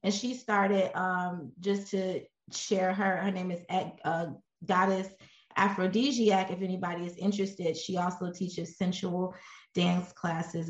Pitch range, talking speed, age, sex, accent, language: 170-195 Hz, 135 wpm, 20-39, female, American, English